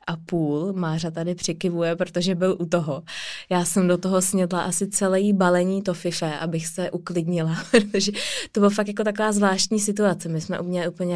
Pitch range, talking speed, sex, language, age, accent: 165-195 Hz, 190 wpm, female, Czech, 20-39, native